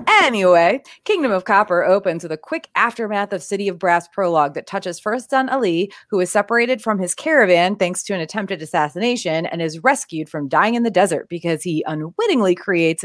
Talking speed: 195 wpm